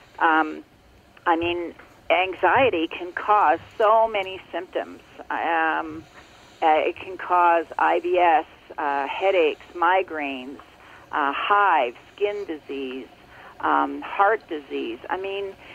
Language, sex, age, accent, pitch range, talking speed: English, female, 40-59, American, 165-235 Hz, 100 wpm